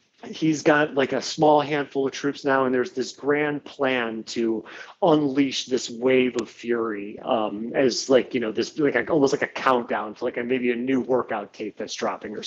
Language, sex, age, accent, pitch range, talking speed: English, male, 40-59, American, 120-145 Hz, 195 wpm